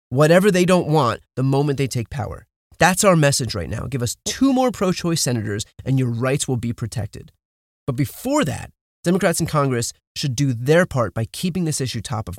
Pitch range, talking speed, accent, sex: 125-190 Hz, 205 wpm, American, male